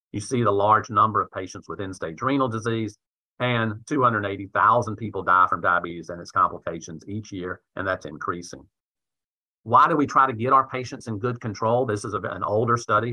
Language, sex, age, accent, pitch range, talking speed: English, male, 40-59, American, 95-115 Hz, 185 wpm